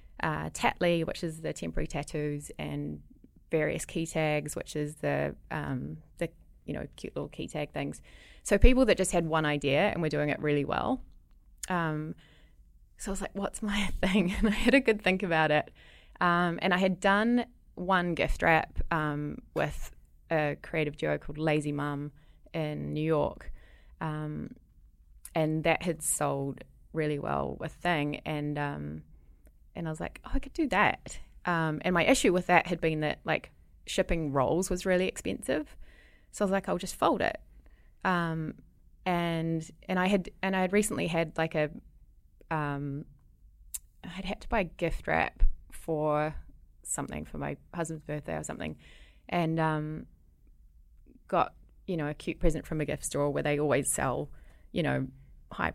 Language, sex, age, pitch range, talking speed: English, female, 20-39, 140-180 Hz, 175 wpm